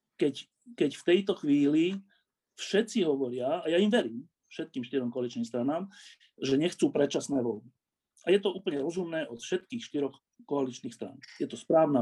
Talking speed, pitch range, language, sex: 160 wpm, 135-195 Hz, Slovak, male